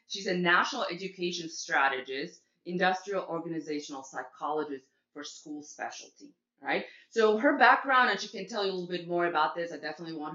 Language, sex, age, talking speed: English, female, 30-49, 170 wpm